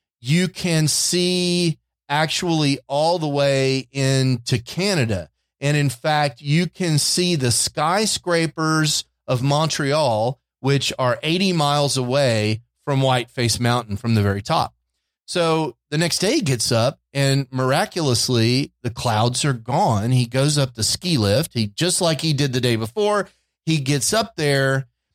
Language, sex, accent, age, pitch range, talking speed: English, male, American, 30-49, 125-160 Hz, 150 wpm